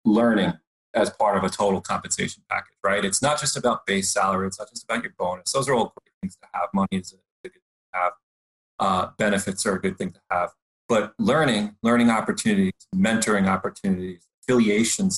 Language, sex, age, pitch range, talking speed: English, male, 30-49, 100-140 Hz, 200 wpm